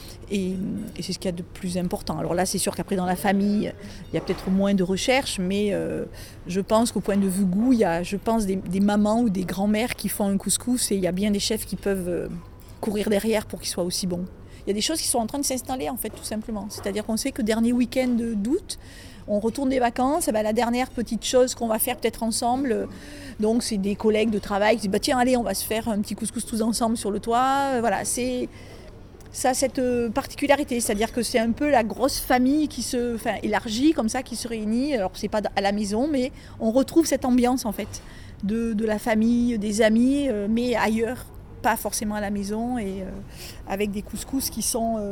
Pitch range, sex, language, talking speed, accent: 200-240 Hz, female, French, 240 wpm, French